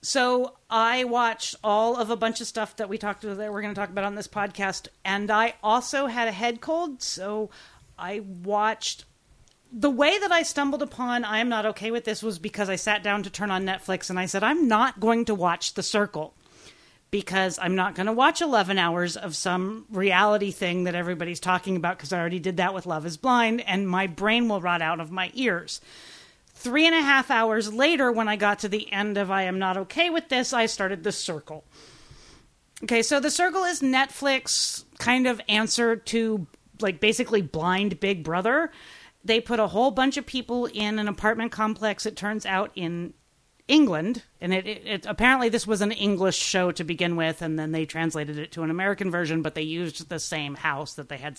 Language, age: English, 40-59